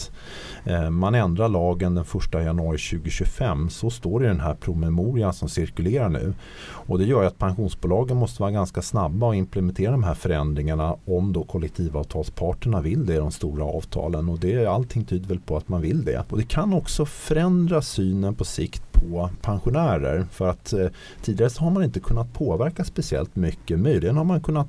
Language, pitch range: Swedish, 85-120 Hz